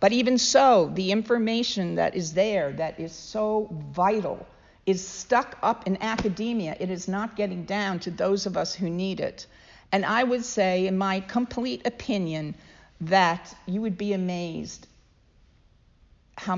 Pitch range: 170-215 Hz